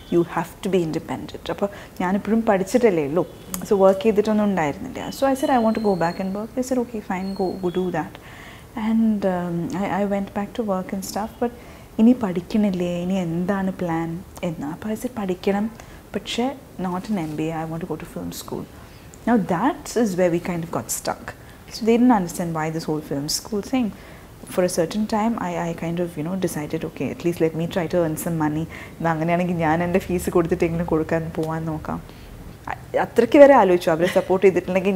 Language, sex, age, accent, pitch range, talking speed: Malayalam, female, 20-39, native, 170-220 Hz, 205 wpm